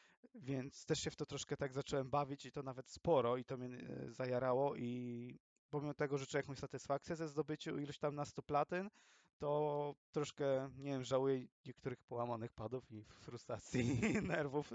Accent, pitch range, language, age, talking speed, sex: native, 125-150 Hz, Polish, 20-39, 170 wpm, male